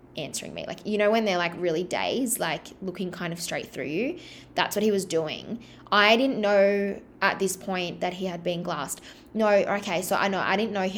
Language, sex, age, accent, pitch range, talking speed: English, female, 20-39, Australian, 170-205 Hz, 230 wpm